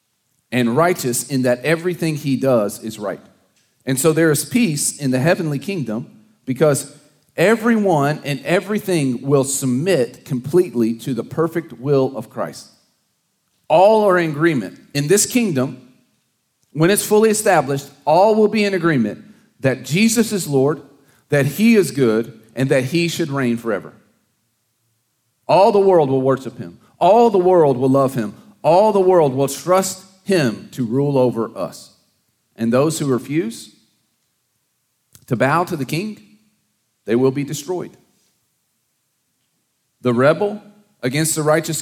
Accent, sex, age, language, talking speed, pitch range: American, male, 40-59, English, 145 wpm, 130-175 Hz